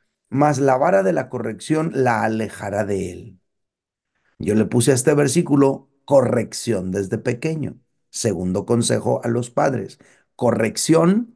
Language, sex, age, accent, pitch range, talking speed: Spanish, male, 50-69, Mexican, 120-150 Hz, 130 wpm